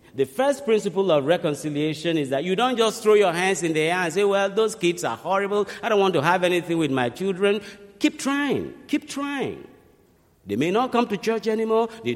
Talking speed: 215 wpm